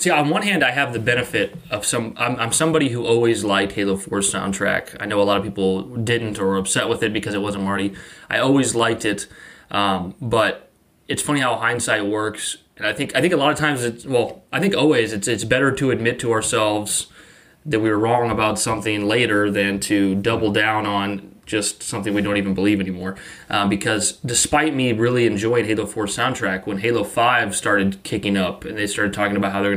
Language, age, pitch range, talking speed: English, 20-39, 100-120 Hz, 220 wpm